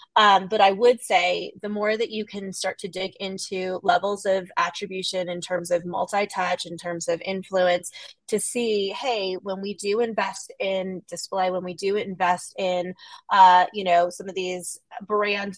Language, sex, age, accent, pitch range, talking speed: English, female, 20-39, American, 180-210 Hz, 175 wpm